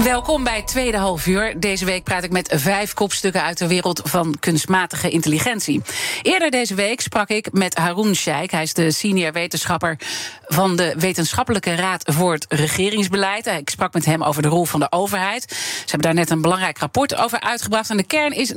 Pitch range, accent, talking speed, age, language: 170-215 Hz, Dutch, 195 wpm, 40-59, Dutch